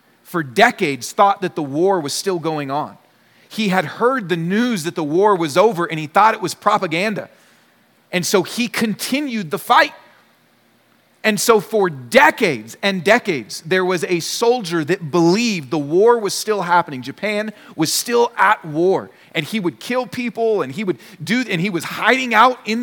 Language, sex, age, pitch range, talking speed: English, male, 30-49, 155-220 Hz, 180 wpm